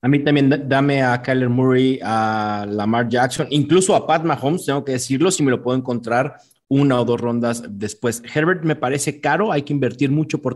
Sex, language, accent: male, Spanish, Mexican